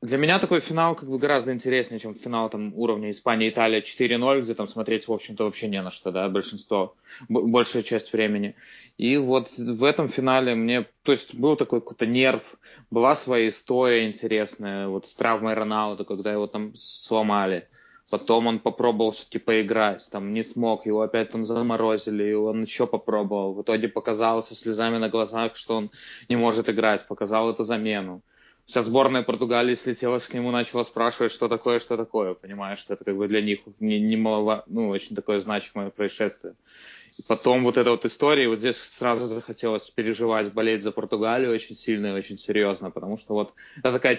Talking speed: 180 wpm